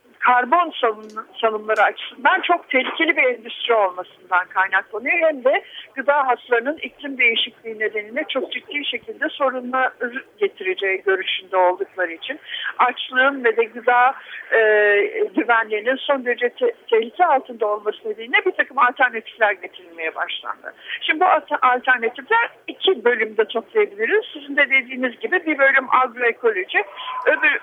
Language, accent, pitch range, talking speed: Turkish, native, 230-370 Hz, 125 wpm